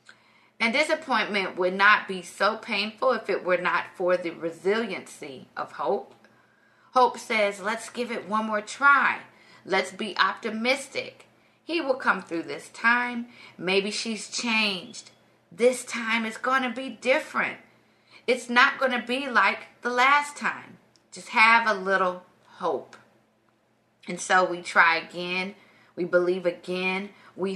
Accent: American